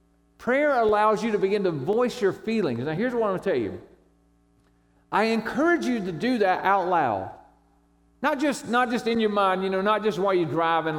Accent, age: American, 50-69